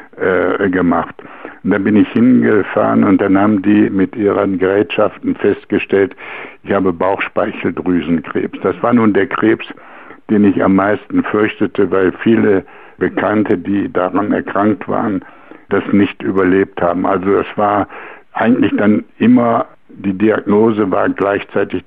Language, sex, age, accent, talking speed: German, male, 70-89, German, 130 wpm